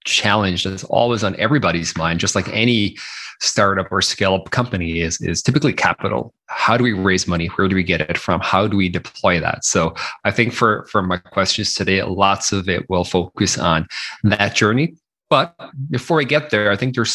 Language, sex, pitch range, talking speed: English, male, 95-115 Hz, 200 wpm